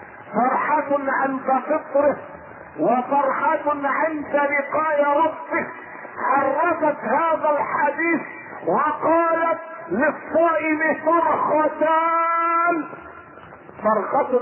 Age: 50-69